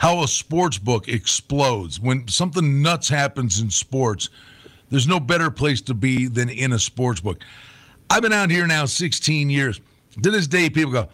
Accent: American